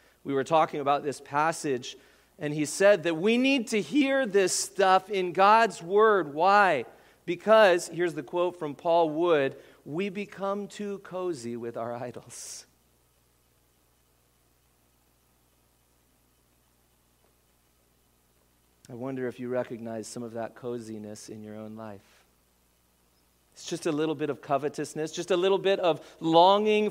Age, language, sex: 40-59, English, male